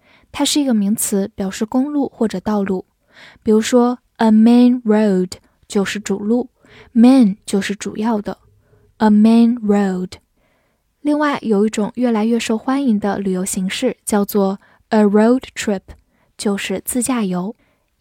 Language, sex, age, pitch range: Chinese, female, 10-29, 205-245 Hz